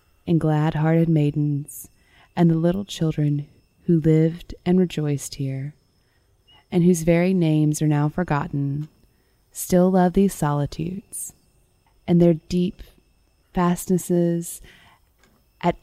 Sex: female